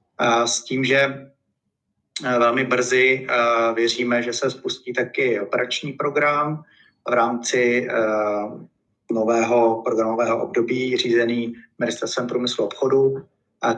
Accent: native